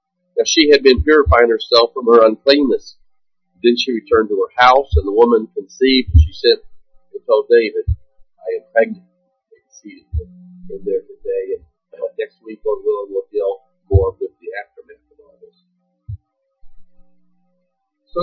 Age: 50-69